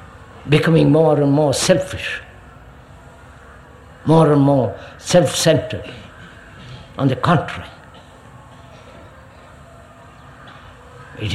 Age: 60-79